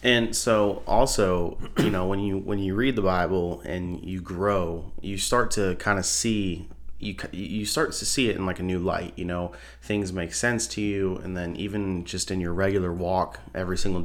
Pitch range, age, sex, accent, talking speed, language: 85-100 Hz, 30-49, male, American, 210 wpm, English